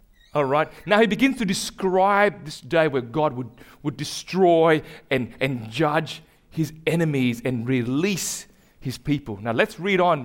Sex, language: male, English